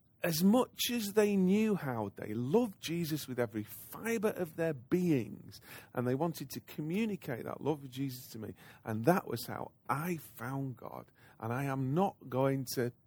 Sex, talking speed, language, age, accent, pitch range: male, 180 wpm, English, 40-59, British, 110-155 Hz